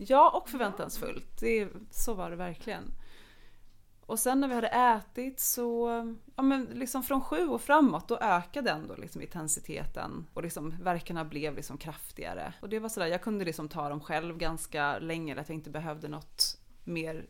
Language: English